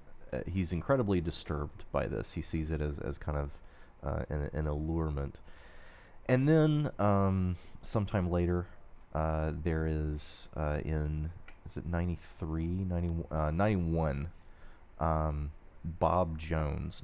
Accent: American